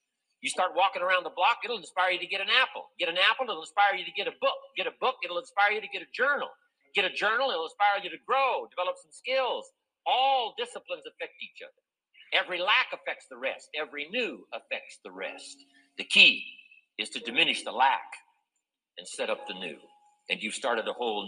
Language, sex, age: Chinese, male, 50-69